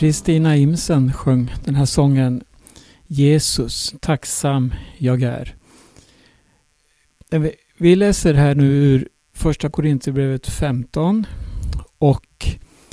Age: 60-79